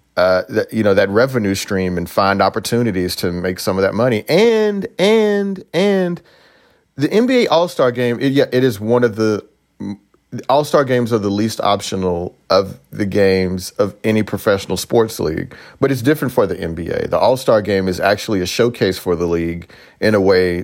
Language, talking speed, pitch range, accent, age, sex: English, 185 wpm, 100-130 Hz, American, 40-59, male